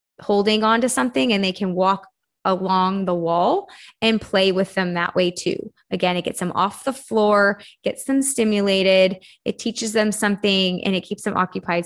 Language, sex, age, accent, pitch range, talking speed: English, female, 20-39, American, 185-220 Hz, 185 wpm